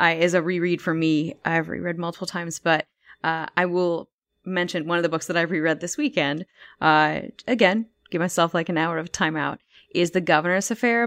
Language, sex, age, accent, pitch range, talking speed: English, female, 20-39, American, 155-185 Hz, 200 wpm